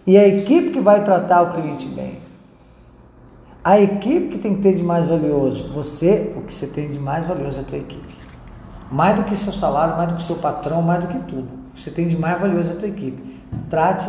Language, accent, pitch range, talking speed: Portuguese, Brazilian, 135-185 Hz, 240 wpm